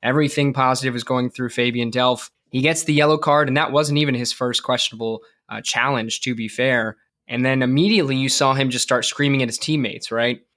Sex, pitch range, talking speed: male, 120-145 Hz, 210 wpm